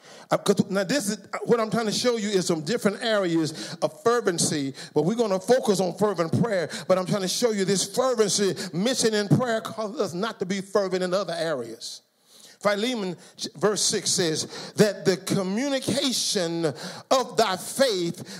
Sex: male